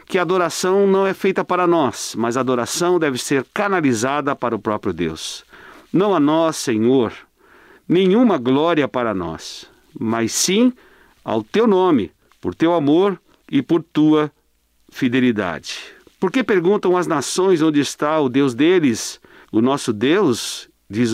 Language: Portuguese